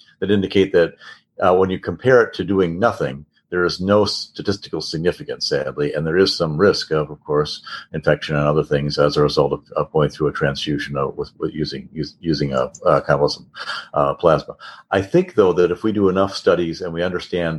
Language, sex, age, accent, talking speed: English, male, 50-69, American, 205 wpm